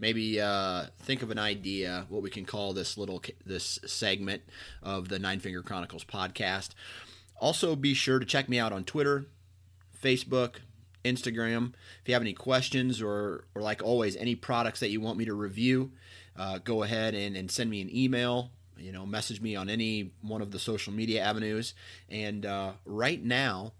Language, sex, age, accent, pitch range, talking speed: English, male, 30-49, American, 95-120 Hz, 185 wpm